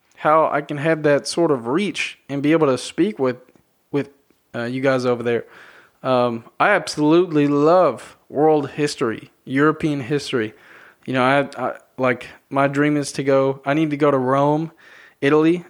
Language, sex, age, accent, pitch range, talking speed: English, male, 20-39, American, 130-150 Hz, 170 wpm